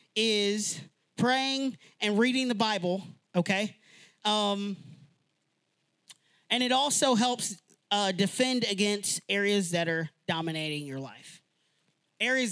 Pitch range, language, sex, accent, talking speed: 155-210 Hz, English, male, American, 105 wpm